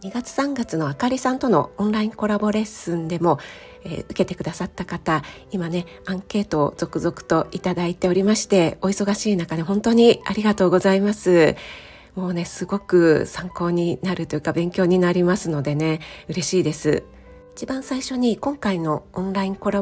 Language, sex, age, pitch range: Japanese, female, 40-59, 170-205 Hz